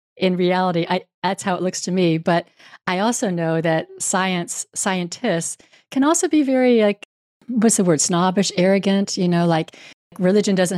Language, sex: English, female